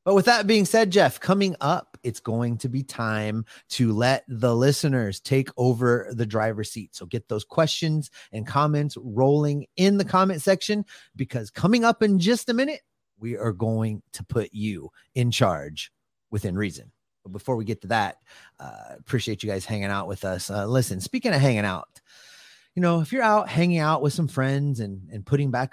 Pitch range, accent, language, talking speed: 105-140 Hz, American, English, 195 wpm